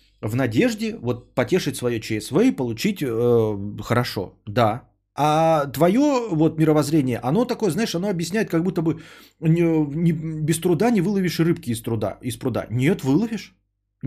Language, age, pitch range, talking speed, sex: Bulgarian, 30-49, 110-175 Hz, 155 wpm, male